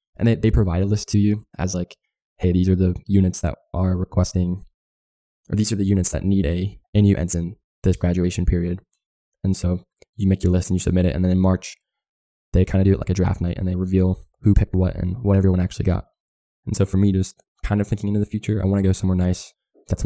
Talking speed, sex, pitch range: 250 wpm, male, 90-100 Hz